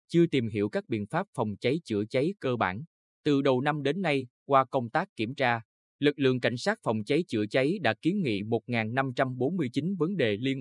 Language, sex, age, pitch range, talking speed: Vietnamese, male, 20-39, 115-150 Hz, 210 wpm